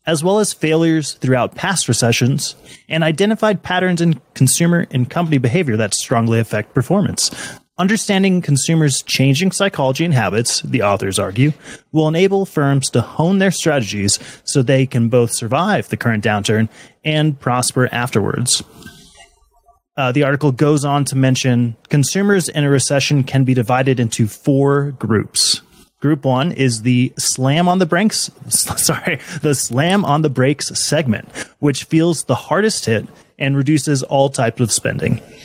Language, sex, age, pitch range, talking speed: English, male, 30-49, 125-165 Hz, 150 wpm